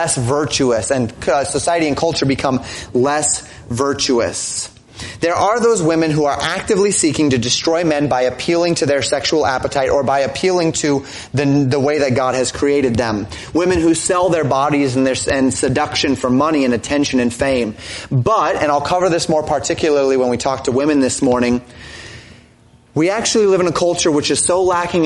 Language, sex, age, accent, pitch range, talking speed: English, male, 30-49, American, 130-165 Hz, 185 wpm